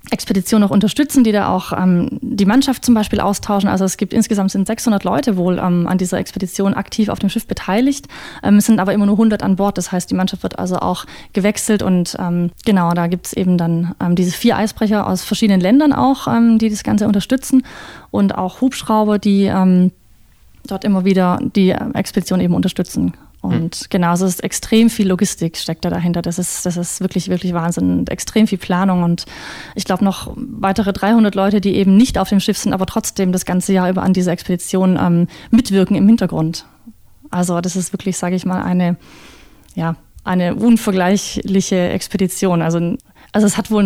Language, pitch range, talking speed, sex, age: German, 180-215 Hz, 195 wpm, female, 20-39